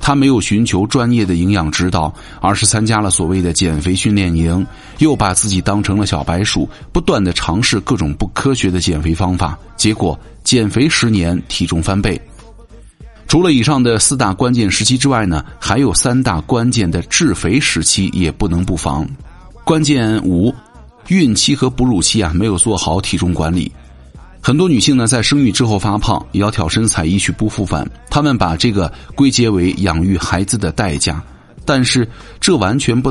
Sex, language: male, Chinese